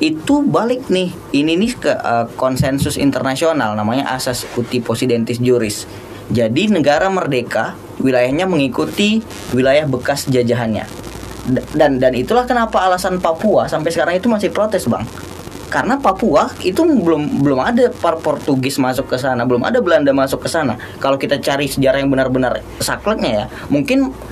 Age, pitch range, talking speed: 10-29, 120-180 Hz, 150 wpm